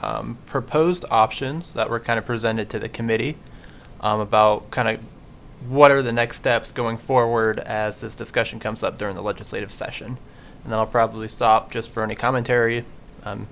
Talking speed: 180 wpm